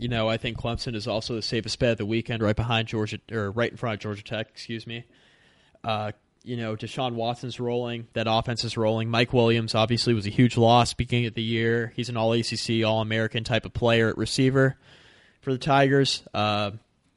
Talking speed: 215 wpm